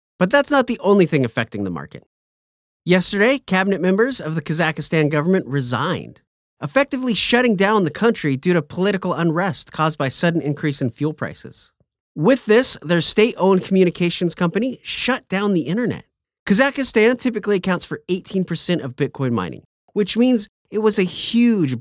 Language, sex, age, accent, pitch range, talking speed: English, male, 30-49, American, 155-215 Hz, 155 wpm